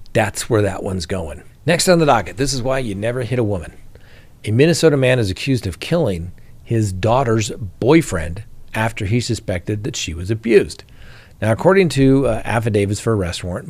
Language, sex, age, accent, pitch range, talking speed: English, male, 50-69, American, 100-125 Hz, 185 wpm